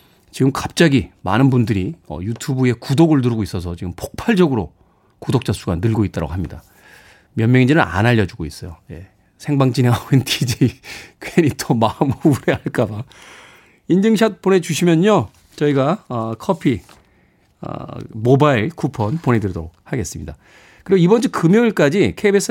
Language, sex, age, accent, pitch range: Korean, male, 40-59, native, 100-165 Hz